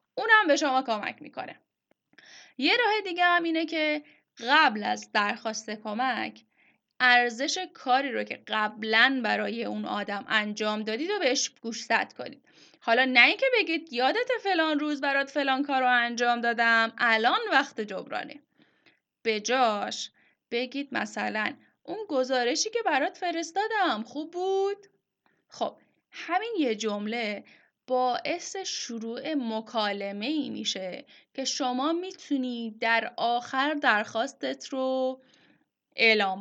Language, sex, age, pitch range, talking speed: Persian, female, 10-29, 220-295 Hz, 120 wpm